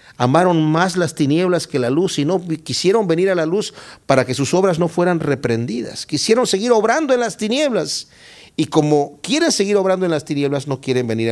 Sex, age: male, 50-69